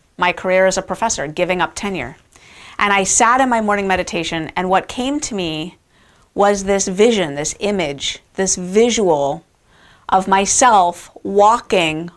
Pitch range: 170-200 Hz